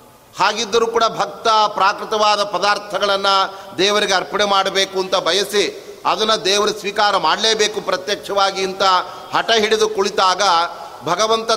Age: 30-49